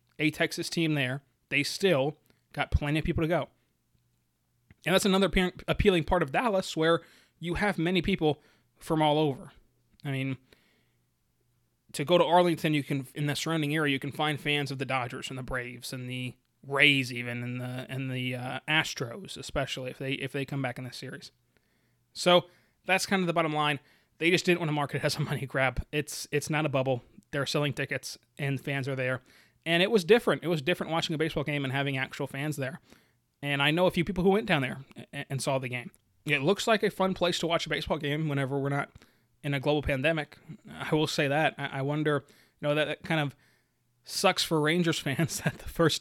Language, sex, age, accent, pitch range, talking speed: English, male, 20-39, American, 135-160 Hz, 215 wpm